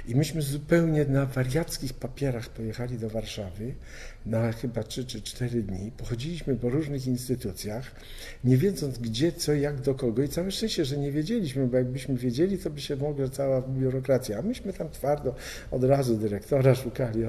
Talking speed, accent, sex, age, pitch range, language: 170 wpm, native, male, 50-69, 115-140 Hz, Polish